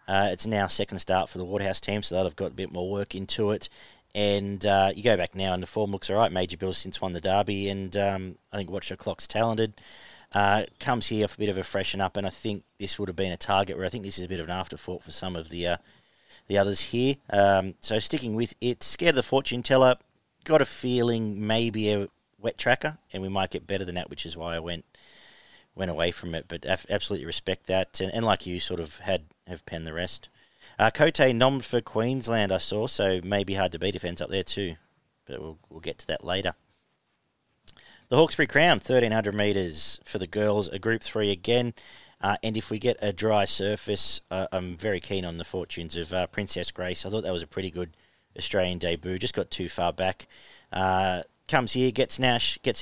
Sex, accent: male, Australian